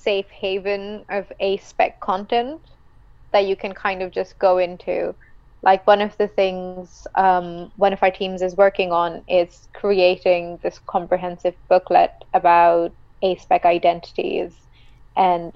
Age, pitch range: 20-39, 175-205 Hz